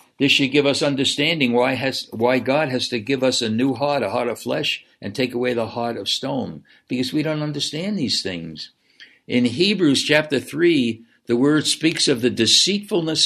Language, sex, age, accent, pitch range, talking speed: English, male, 60-79, American, 125-175 Hz, 195 wpm